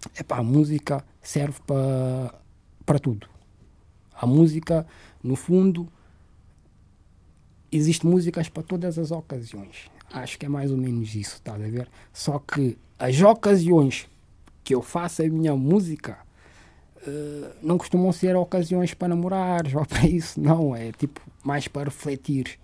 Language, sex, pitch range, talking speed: Portuguese, male, 115-175 Hz, 145 wpm